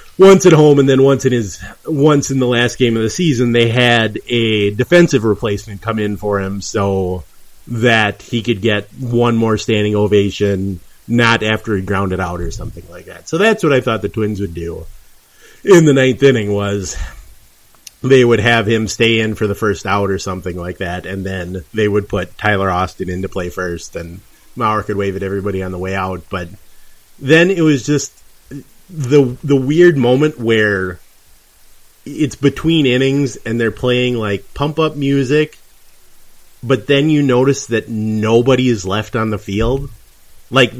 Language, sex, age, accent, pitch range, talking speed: English, male, 30-49, American, 100-140 Hz, 180 wpm